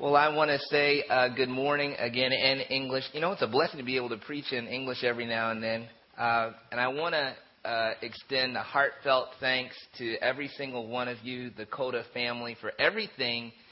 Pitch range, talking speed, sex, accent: 115-135 Hz, 210 wpm, male, American